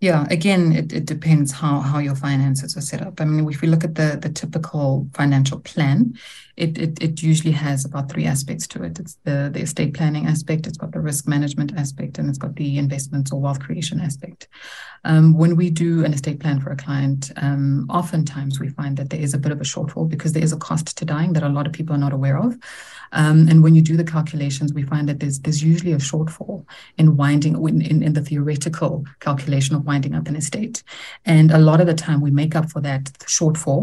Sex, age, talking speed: female, 30-49, 235 wpm